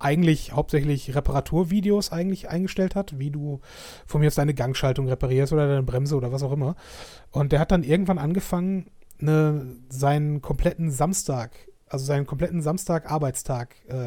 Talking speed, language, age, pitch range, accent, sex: 145 wpm, German, 30-49, 140-165 Hz, German, male